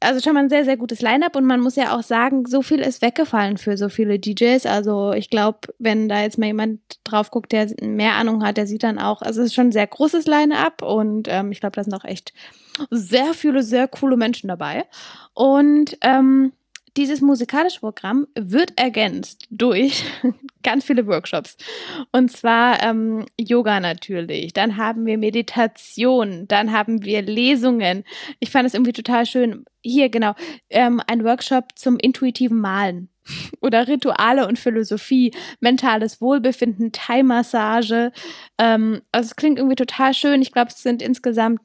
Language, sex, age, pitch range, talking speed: German, female, 10-29, 220-265 Hz, 170 wpm